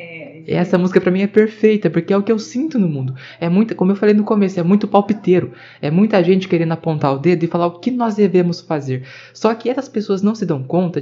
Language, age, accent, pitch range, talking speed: Portuguese, 20-39, Brazilian, 150-195 Hz, 250 wpm